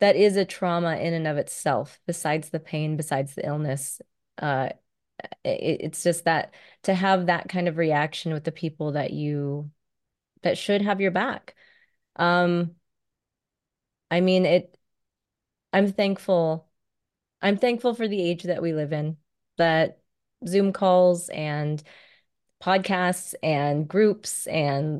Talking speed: 135 wpm